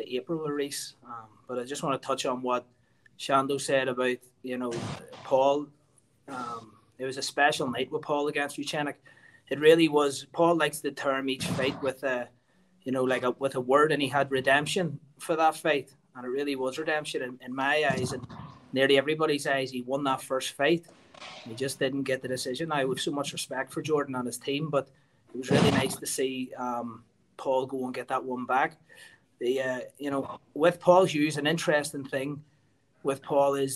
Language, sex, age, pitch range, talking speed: English, male, 20-39, 130-150 Hz, 200 wpm